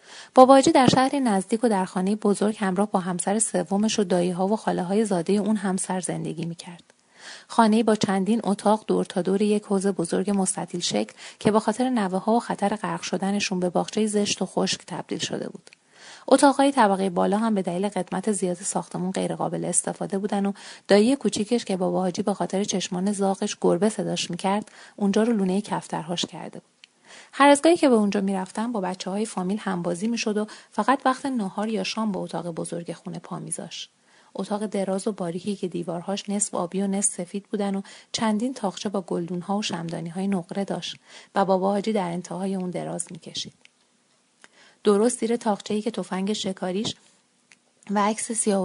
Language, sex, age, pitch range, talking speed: Persian, female, 30-49, 185-215 Hz, 185 wpm